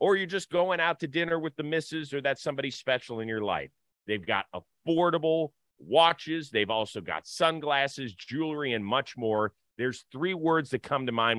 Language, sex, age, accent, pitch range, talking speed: English, male, 40-59, American, 115-150 Hz, 190 wpm